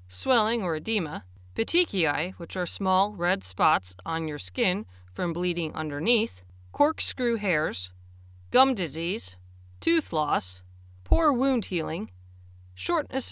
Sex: female